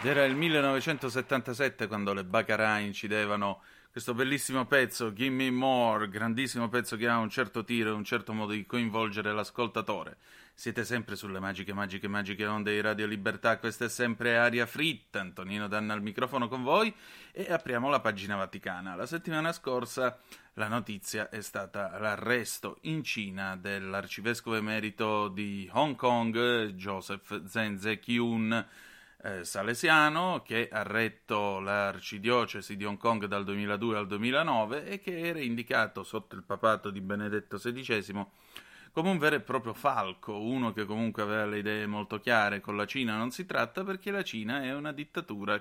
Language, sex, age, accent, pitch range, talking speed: Italian, male, 30-49, native, 105-125 Hz, 155 wpm